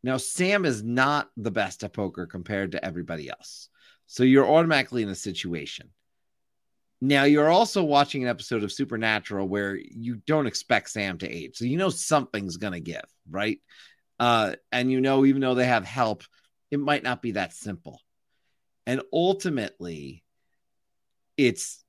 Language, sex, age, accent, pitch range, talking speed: English, male, 40-59, American, 110-145 Hz, 160 wpm